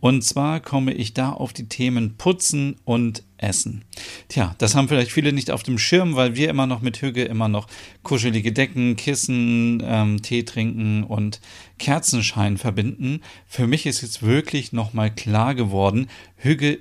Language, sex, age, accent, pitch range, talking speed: German, male, 40-59, German, 110-130 Hz, 165 wpm